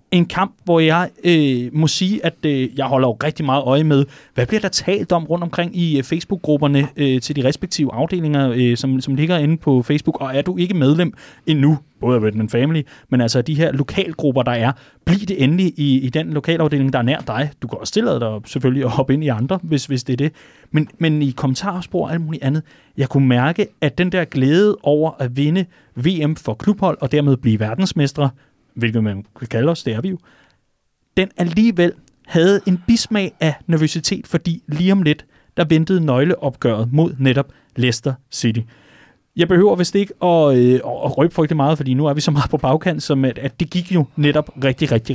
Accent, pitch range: native, 135-170 Hz